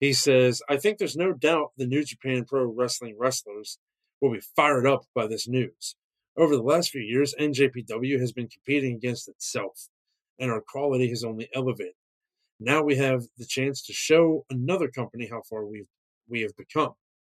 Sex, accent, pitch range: male, American, 125-155 Hz